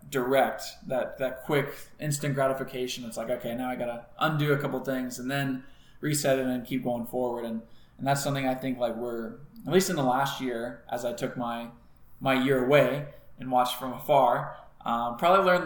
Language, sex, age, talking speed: English, male, 20-39, 200 wpm